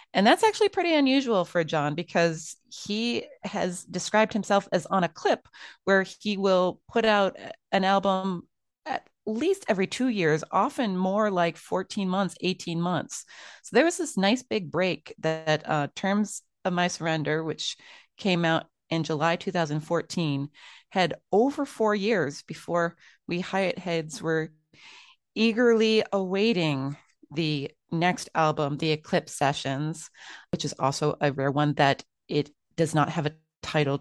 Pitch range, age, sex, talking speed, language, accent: 155-205 Hz, 30-49, female, 150 wpm, English, American